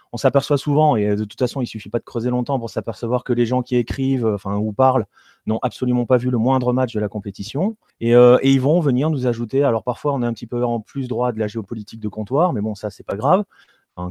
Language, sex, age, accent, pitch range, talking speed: French, male, 30-49, French, 110-145 Hz, 270 wpm